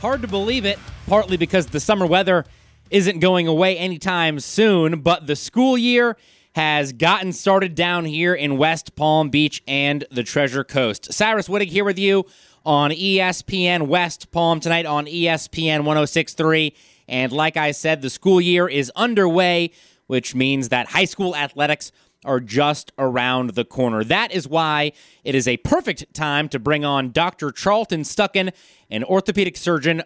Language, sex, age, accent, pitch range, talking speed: English, male, 30-49, American, 145-190 Hz, 160 wpm